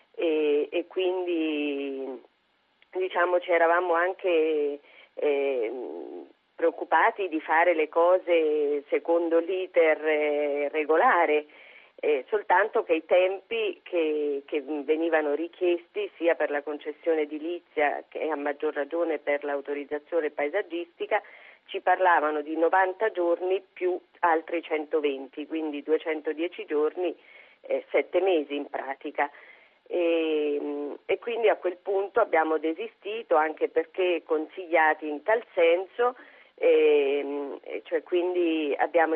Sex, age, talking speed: female, 40-59, 110 wpm